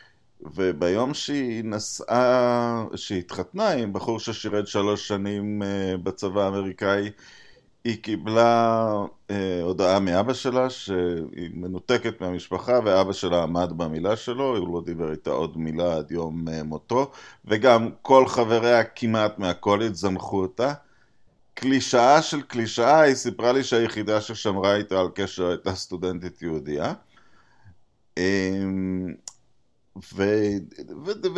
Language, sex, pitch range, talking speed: Hebrew, male, 95-130 Hz, 110 wpm